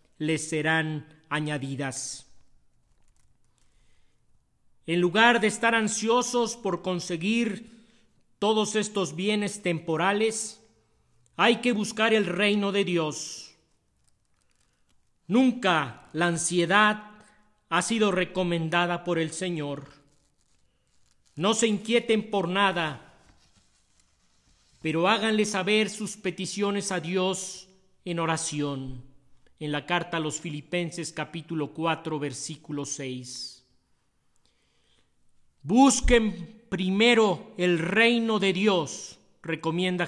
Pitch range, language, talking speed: 155-210 Hz, Spanish, 90 wpm